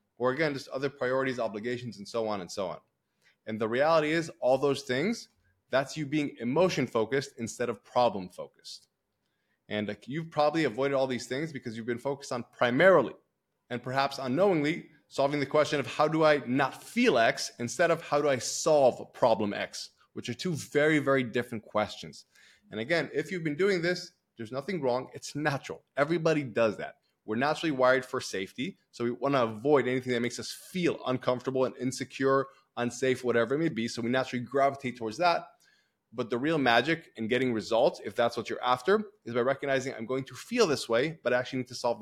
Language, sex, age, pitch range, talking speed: English, male, 20-39, 120-150 Hz, 200 wpm